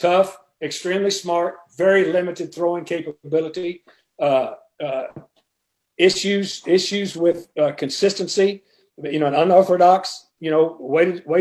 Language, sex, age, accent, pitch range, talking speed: English, male, 50-69, American, 165-200 Hz, 110 wpm